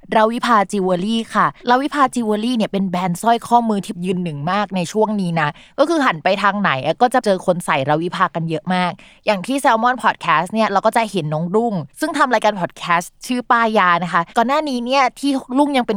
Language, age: Thai, 20-39